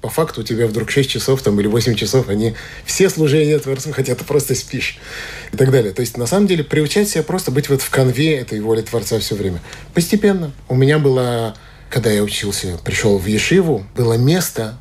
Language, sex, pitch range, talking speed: Russian, male, 115-150 Hz, 205 wpm